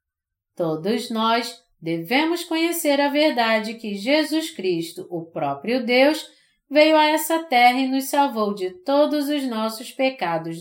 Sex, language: female, Portuguese